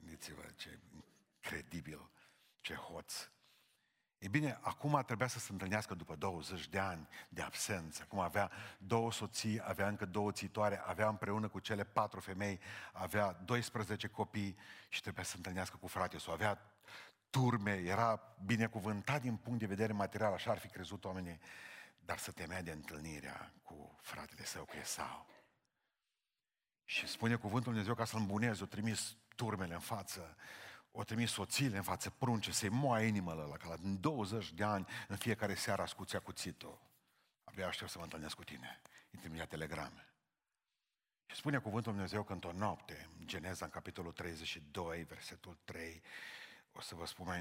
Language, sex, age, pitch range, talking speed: Romanian, male, 50-69, 85-110 Hz, 160 wpm